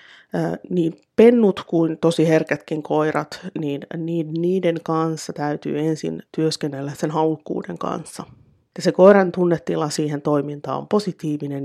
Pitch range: 150-180 Hz